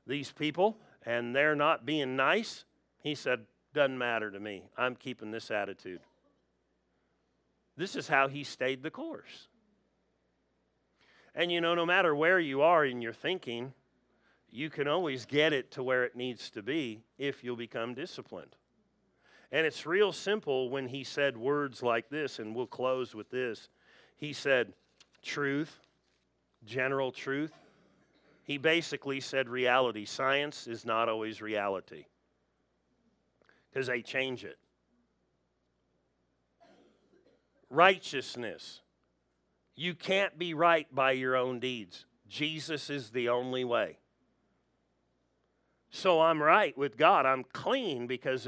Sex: male